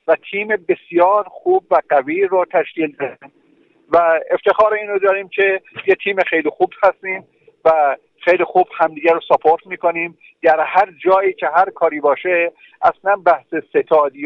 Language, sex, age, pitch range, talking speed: Persian, male, 50-69, 160-195 Hz, 155 wpm